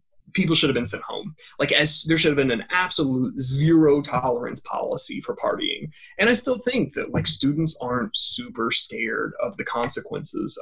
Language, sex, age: English, male, 20-39